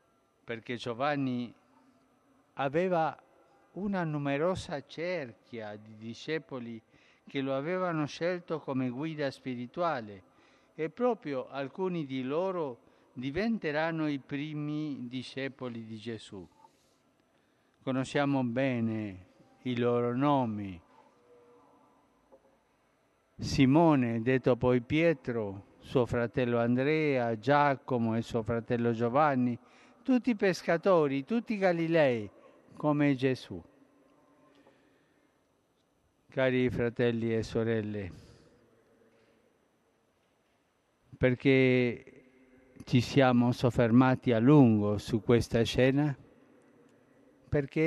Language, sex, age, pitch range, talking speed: Italian, male, 50-69, 120-150 Hz, 80 wpm